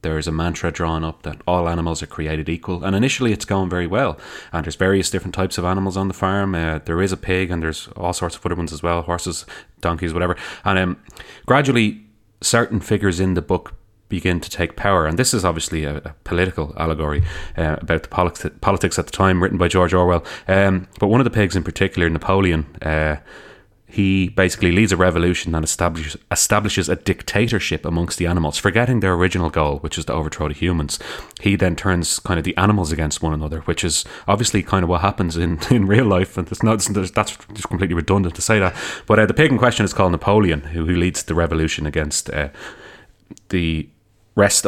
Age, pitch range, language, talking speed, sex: 30-49, 85-100 Hz, English, 210 wpm, male